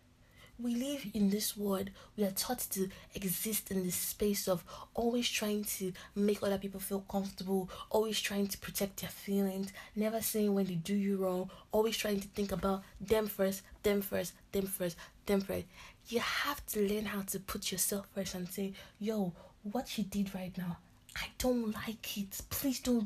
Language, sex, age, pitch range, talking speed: English, female, 20-39, 185-220 Hz, 185 wpm